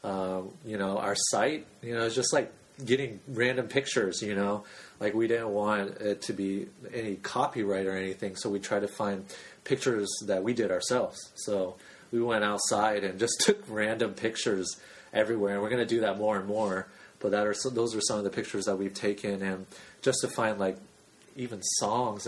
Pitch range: 100-125 Hz